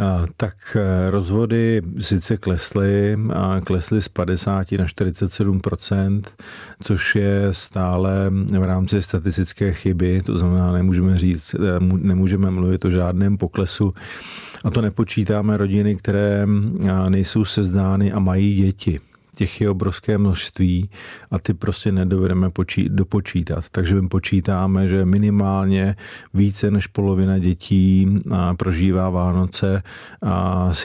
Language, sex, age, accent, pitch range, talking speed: Czech, male, 40-59, native, 95-100 Hz, 105 wpm